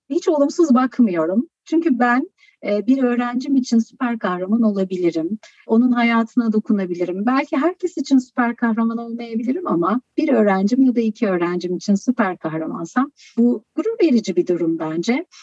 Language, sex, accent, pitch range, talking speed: Turkish, female, native, 195-255 Hz, 140 wpm